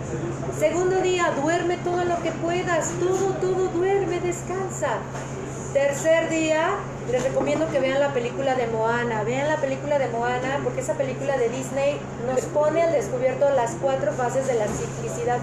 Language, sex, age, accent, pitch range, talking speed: Spanish, female, 30-49, Mexican, 235-320 Hz, 160 wpm